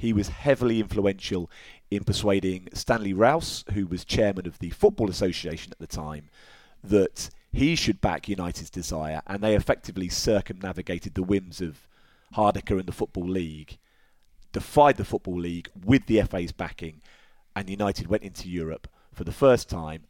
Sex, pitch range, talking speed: male, 85-100 Hz, 160 wpm